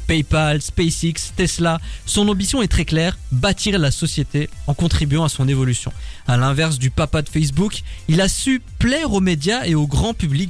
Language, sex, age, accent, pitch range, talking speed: French, male, 20-39, French, 140-190 Hz, 185 wpm